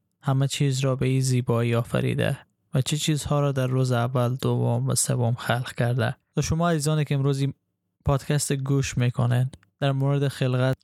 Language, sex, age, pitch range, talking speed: Persian, male, 10-29, 120-140 Hz, 170 wpm